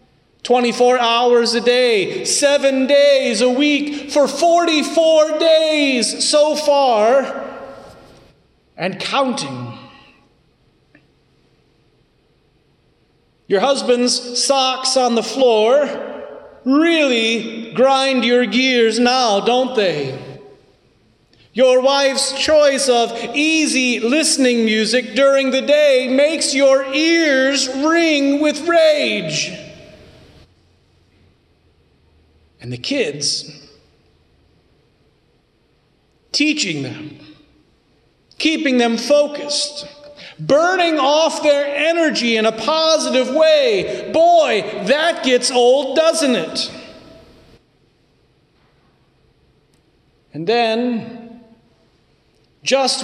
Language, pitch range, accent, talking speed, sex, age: English, 230-290 Hz, American, 80 wpm, male, 40-59